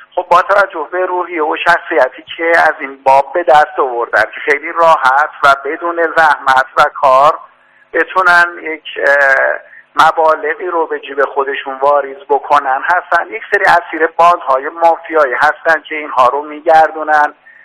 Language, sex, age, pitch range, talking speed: Persian, male, 50-69, 145-170 Hz, 145 wpm